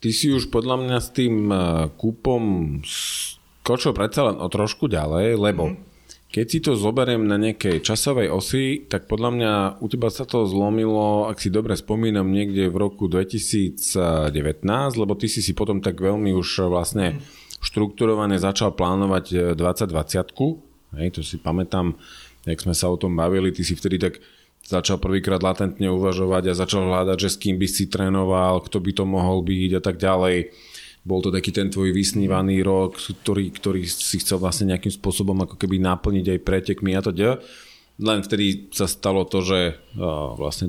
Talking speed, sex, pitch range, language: 170 wpm, male, 90-105 Hz, Slovak